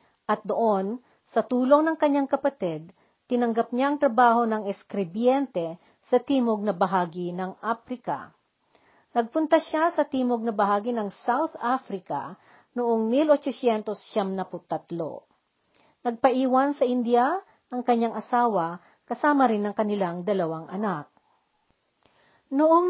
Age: 50-69